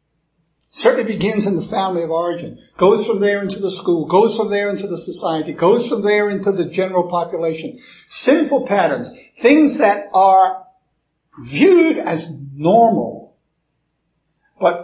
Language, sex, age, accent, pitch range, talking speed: English, male, 60-79, American, 180-235 Hz, 140 wpm